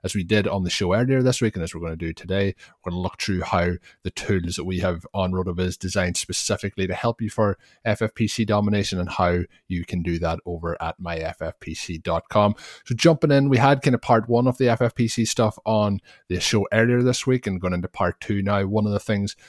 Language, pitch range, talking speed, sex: English, 90-105 Hz, 230 wpm, male